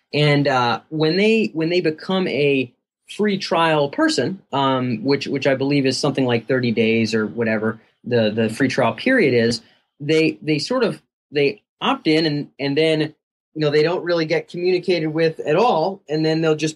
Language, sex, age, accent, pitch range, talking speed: English, male, 30-49, American, 130-165 Hz, 190 wpm